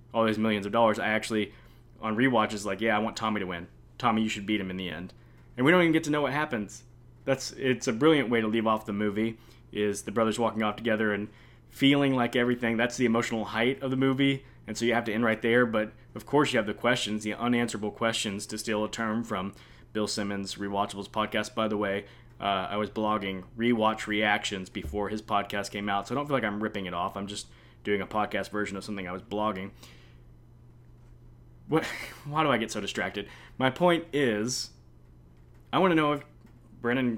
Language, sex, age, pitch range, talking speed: English, male, 20-39, 105-120 Hz, 220 wpm